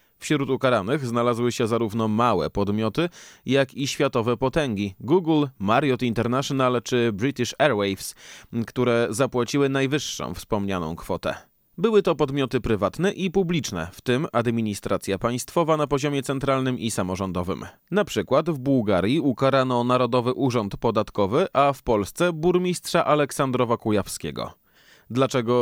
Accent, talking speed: native, 120 wpm